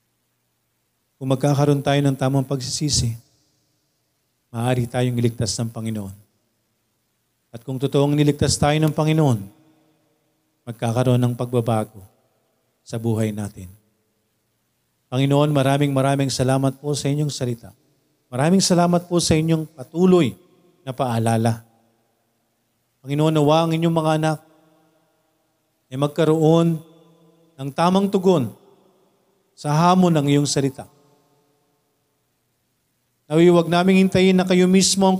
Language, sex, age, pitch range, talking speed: Filipino, male, 40-59, 120-155 Hz, 110 wpm